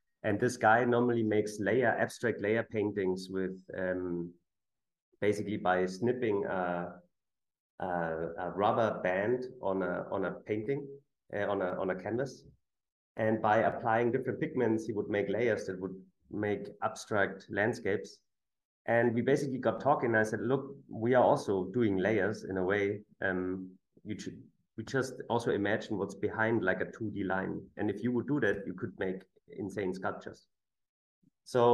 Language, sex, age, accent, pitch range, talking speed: English, male, 30-49, German, 100-120 Hz, 165 wpm